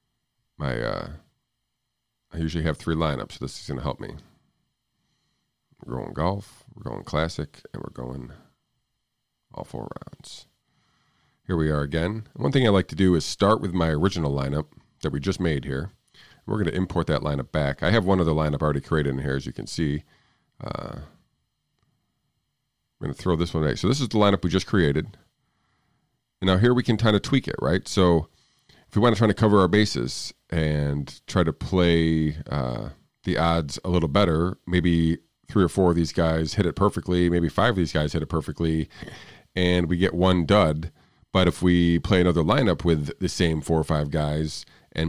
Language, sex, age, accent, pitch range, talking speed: English, male, 40-59, American, 80-100 Hz, 200 wpm